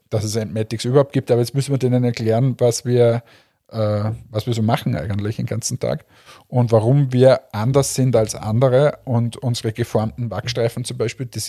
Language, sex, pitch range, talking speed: German, male, 110-130 Hz, 190 wpm